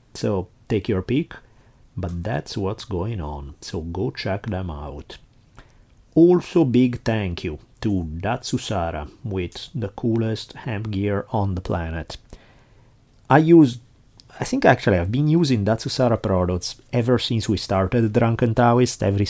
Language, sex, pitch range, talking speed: English, male, 95-120 Hz, 140 wpm